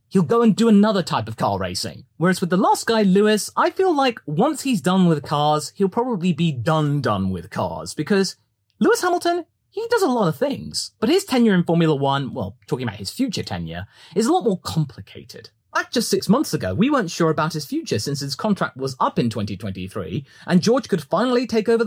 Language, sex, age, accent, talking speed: English, male, 30-49, British, 220 wpm